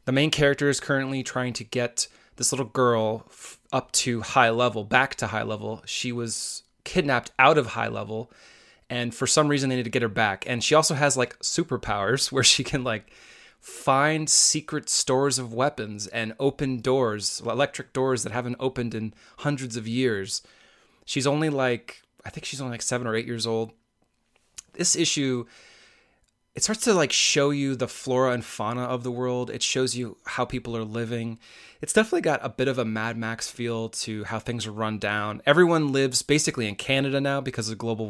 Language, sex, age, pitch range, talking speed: English, male, 20-39, 115-135 Hz, 195 wpm